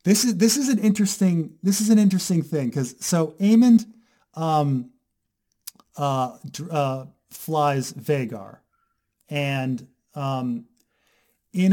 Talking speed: 115 wpm